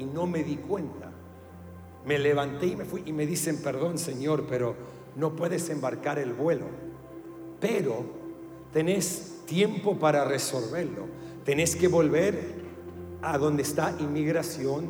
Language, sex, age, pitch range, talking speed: English, male, 50-69, 150-185 Hz, 135 wpm